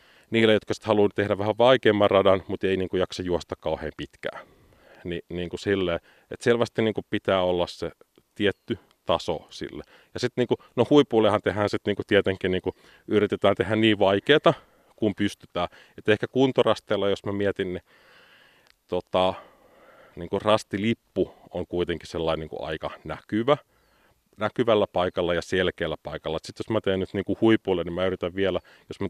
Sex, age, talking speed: male, 30-49, 155 wpm